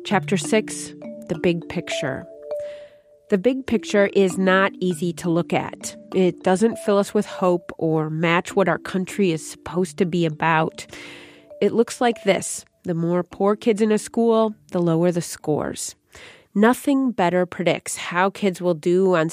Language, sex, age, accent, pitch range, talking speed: English, female, 30-49, American, 170-215 Hz, 165 wpm